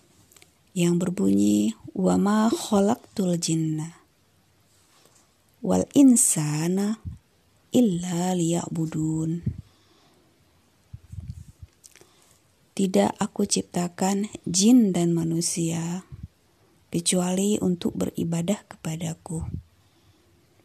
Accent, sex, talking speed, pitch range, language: native, female, 55 wpm, 155-210 Hz, Indonesian